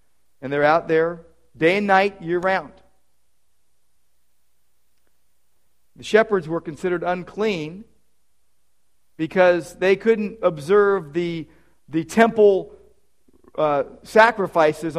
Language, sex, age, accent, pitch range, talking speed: English, male, 50-69, American, 165-250 Hz, 90 wpm